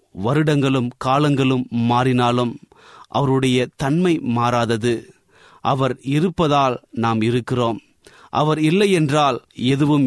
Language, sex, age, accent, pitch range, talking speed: Tamil, male, 30-49, native, 120-140 Hz, 85 wpm